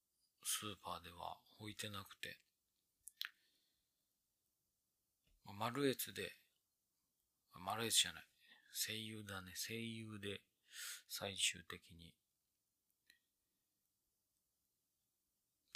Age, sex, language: 40-59, male, Japanese